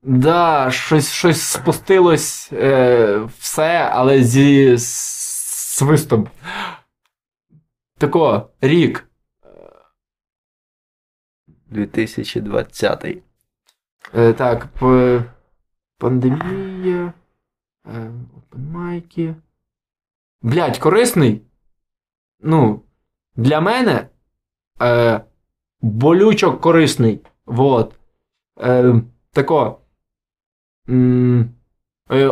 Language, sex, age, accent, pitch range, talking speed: Ukrainian, male, 20-39, native, 130-195 Hz, 55 wpm